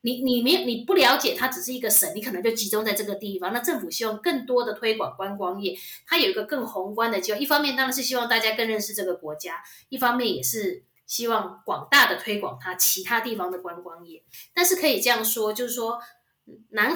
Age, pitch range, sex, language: 20-39, 190-260 Hz, female, Chinese